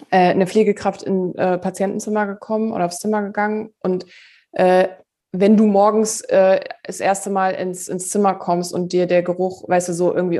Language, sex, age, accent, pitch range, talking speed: German, female, 20-39, German, 190-215 Hz, 180 wpm